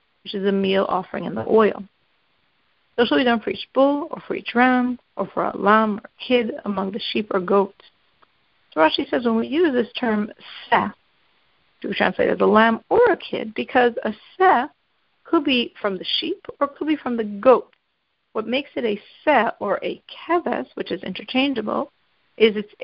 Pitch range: 210-270 Hz